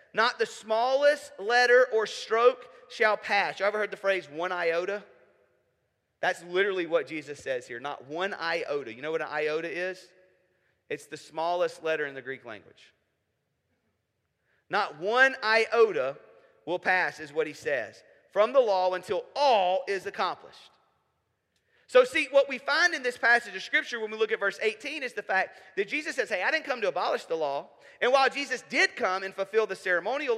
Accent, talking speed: American, 185 wpm